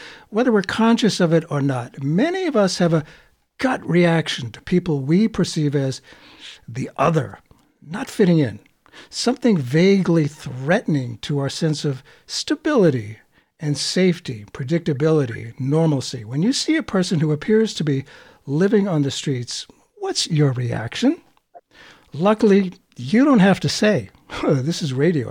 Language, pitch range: English, 140-200 Hz